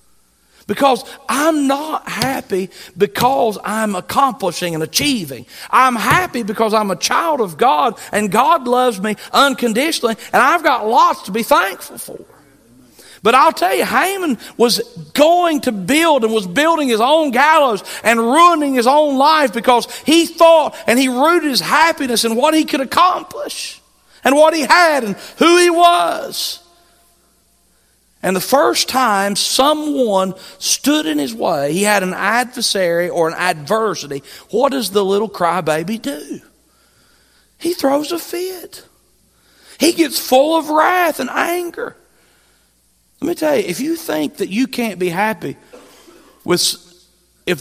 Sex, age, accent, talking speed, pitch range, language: male, 40-59, American, 150 wpm, 185-300 Hz, English